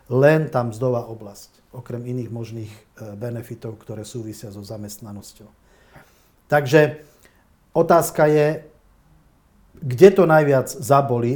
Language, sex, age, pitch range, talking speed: Slovak, male, 40-59, 120-145 Hz, 100 wpm